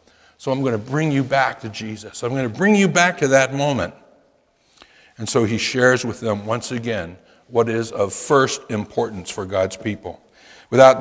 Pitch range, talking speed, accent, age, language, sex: 115-165 Hz, 190 wpm, American, 60-79, English, male